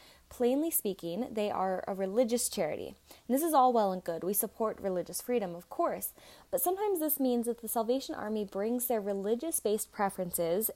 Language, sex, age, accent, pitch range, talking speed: English, female, 20-39, American, 195-265 Hz, 180 wpm